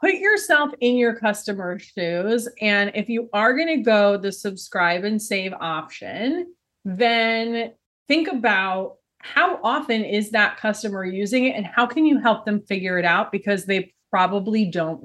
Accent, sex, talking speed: American, female, 165 wpm